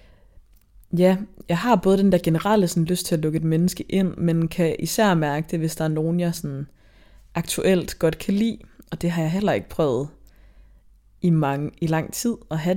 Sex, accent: female, native